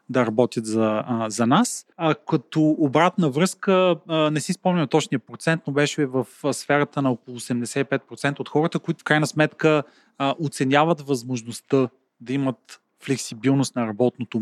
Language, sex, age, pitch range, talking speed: Bulgarian, male, 30-49, 130-165 Hz, 145 wpm